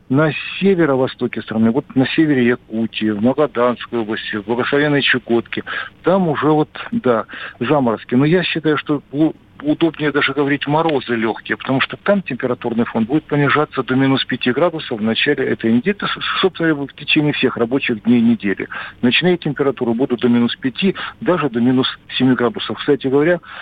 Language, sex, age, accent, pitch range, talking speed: Russian, male, 50-69, native, 115-145 Hz, 160 wpm